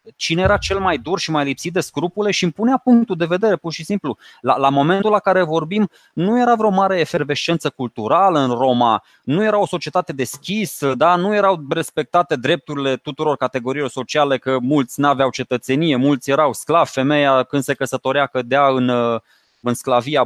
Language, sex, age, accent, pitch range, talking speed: Romanian, male, 20-39, native, 145-220 Hz, 185 wpm